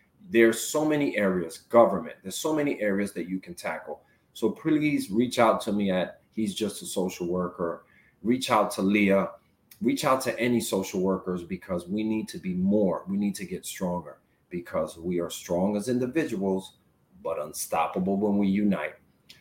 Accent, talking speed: American, 175 wpm